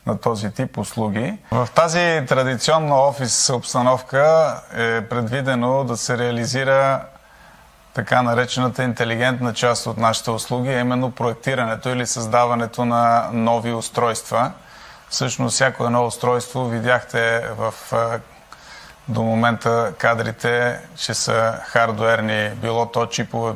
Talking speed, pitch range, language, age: 110 wpm, 115-125 Hz, Bulgarian, 30-49